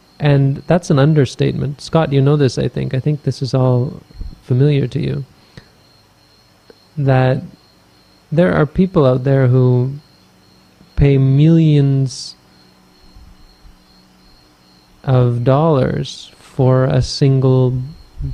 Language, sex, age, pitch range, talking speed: English, male, 30-49, 125-150 Hz, 105 wpm